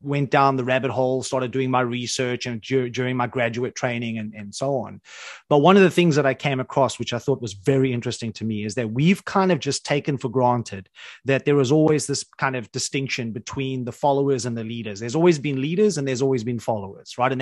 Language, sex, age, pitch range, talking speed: English, male, 30-49, 125-150 Hz, 240 wpm